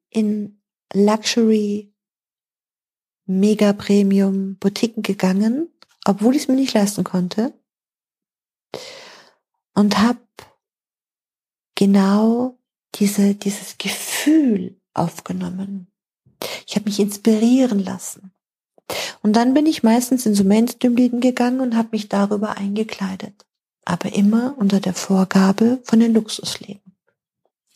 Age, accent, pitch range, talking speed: 40-59, German, 200-235 Hz, 100 wpm